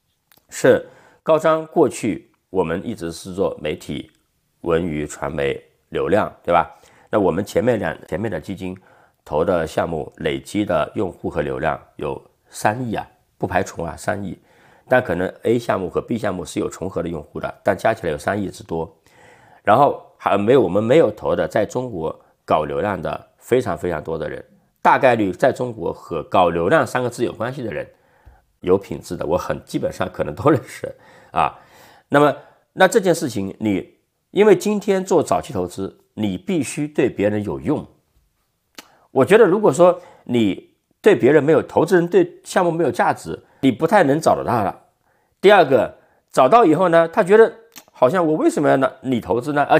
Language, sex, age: Chinese, male, 50-69